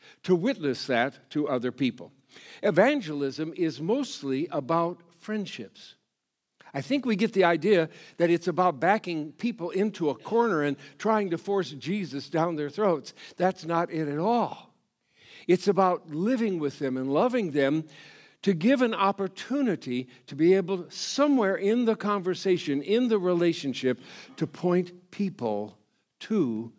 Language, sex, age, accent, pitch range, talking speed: English, male, 60-79, American, 140-205 Hz, 145 wpm